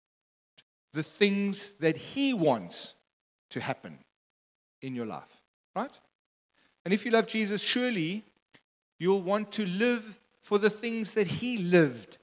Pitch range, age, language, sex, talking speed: 150-215 Hz, 40-59, English, male, 130 wpm